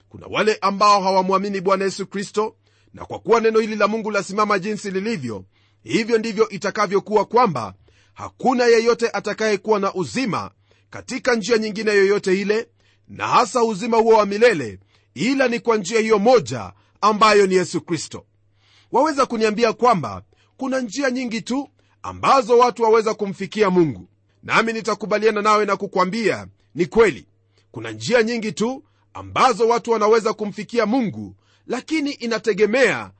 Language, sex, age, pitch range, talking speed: Swahili, male, 40-59, 170-235 Hz, 140 wpm